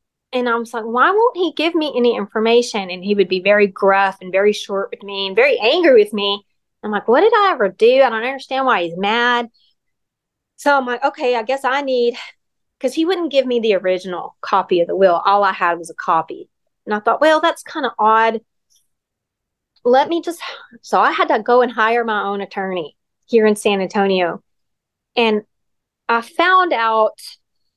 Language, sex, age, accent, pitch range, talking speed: English, female, 30-49, American, 195-250 Hz, 200 wpm